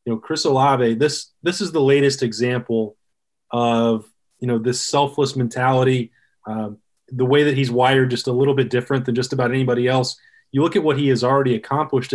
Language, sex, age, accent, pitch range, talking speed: English, male, 20-39, American, 120-135 Hz, 200 wpm